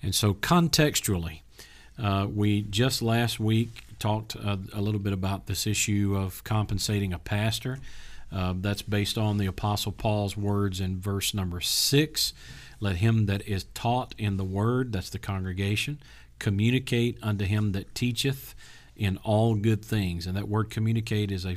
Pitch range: 95-105 Hz